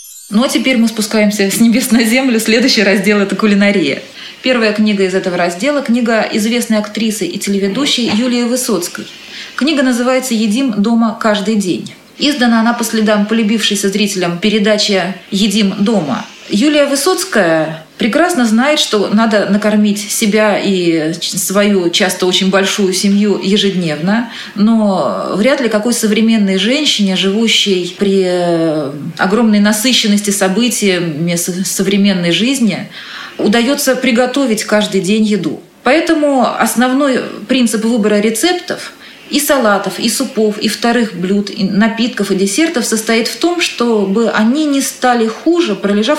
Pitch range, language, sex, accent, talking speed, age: 200-245 Hz, Russian, female, native, 125 wpm, 30-49